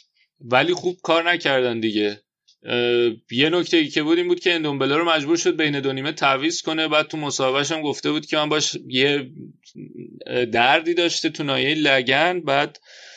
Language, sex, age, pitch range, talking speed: Persian, male, 30-49, 120-155 Hz, 165 wpm